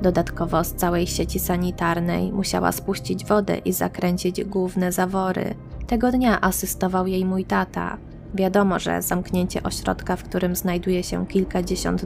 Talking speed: 135 wpm